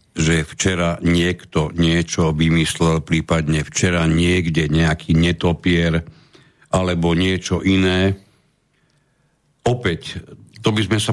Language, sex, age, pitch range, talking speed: Slovak, male, 60-79, 80-100 Hz, 95 wpm